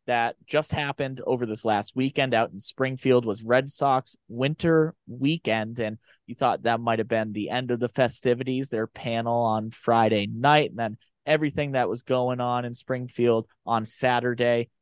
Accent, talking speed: American, 175 wpm